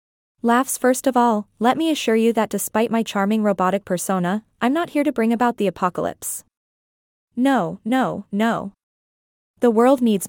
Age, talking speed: 20-39, 165 wpm